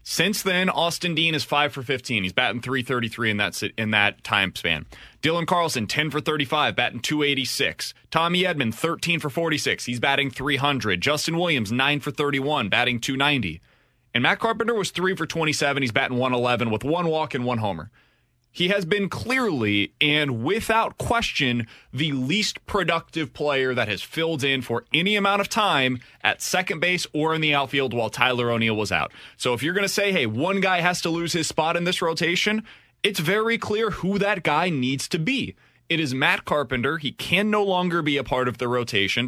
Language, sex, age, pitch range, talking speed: English, male, 30-49, 120-175 Hz, 195 wpm